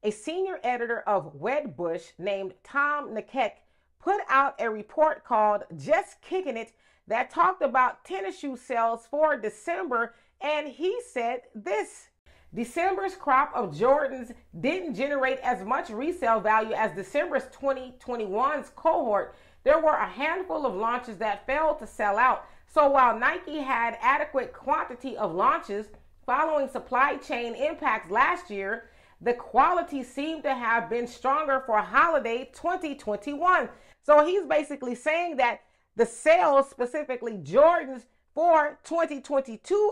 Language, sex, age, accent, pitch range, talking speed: English, female, 40-59, American, 235-300 Hz, 130 wpm